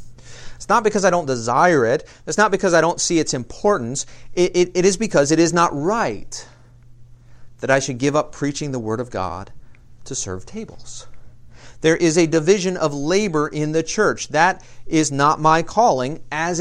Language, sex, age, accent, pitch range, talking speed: English, male, 40-59, American, 120-155 Hz, 190 wpm